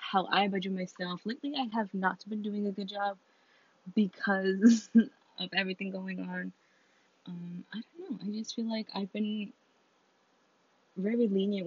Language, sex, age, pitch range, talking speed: English, female, 20-39, 175-220 Hz, 155 wpm